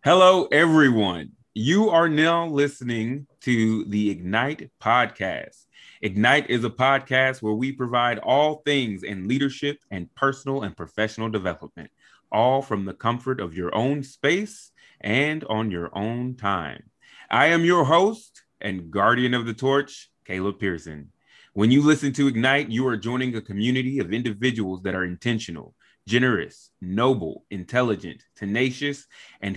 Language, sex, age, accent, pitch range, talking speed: English, male, 30-49, American, 100-130 Hz, 140 wpm